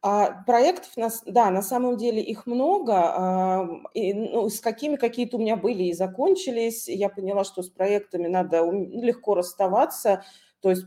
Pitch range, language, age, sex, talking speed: 180-225 Hz, Russian, 30-49, female, 155 wpm